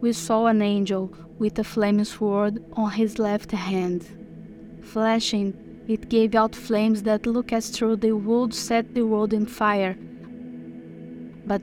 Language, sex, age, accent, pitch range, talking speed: English, female, 20-39, Brazilian, 200-225 Hz, 150 wpm